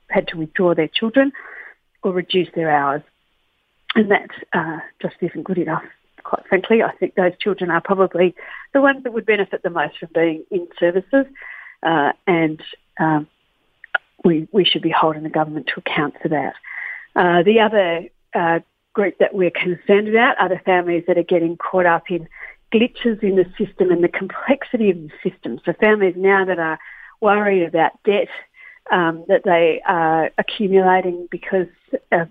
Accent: Australian